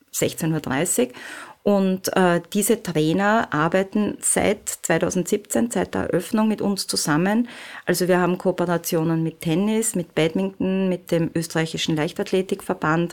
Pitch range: 165-200 Hz